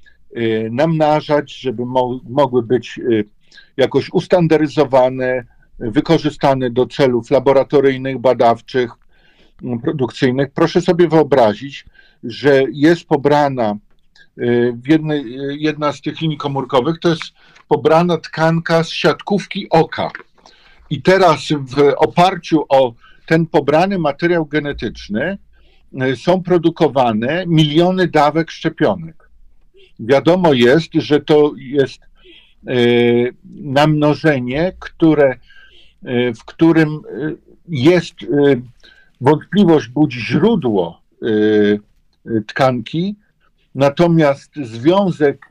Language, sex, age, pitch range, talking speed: Polish, male, 50-69, 130-165 Hz, 80 wpm